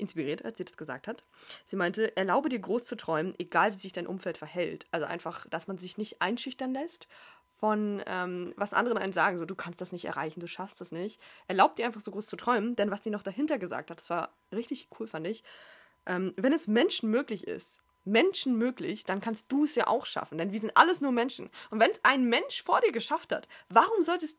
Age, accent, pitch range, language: 20-39, German, 185-250 Hz, German